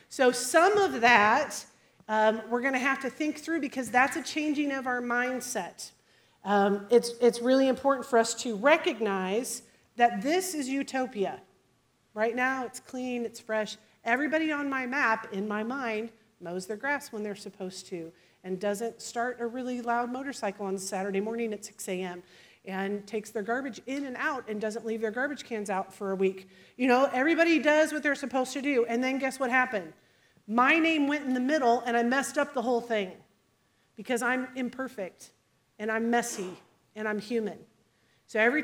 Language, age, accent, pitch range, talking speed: English, 40-59, American, 220-275 Hz, 185 wpm